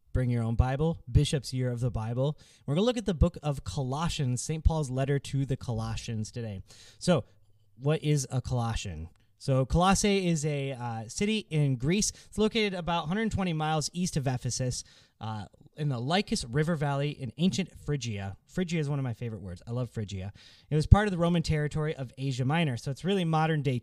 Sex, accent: male, American